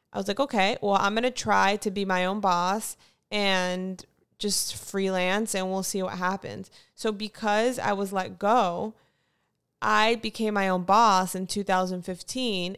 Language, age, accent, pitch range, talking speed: English, 20-39, American, 180-200 Hz, 160 wpm